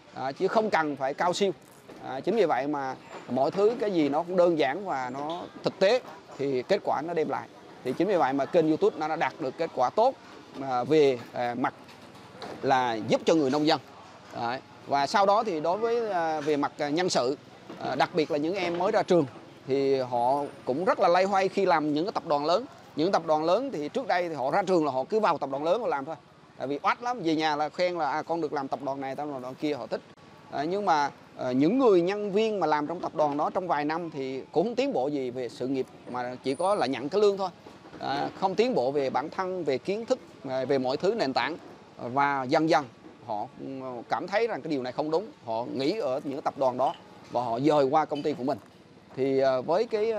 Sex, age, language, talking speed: male, 20-39, Vietnamese, 245 wpm